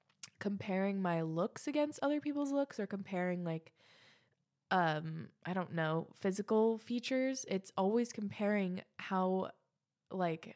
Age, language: 20-39, English